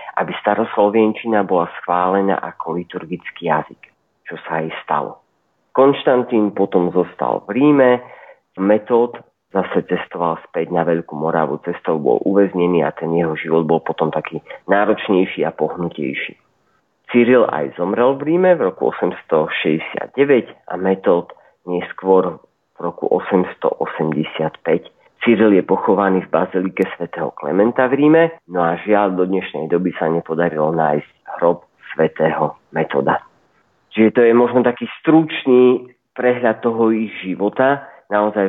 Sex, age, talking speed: male, 40-59, 130 wpm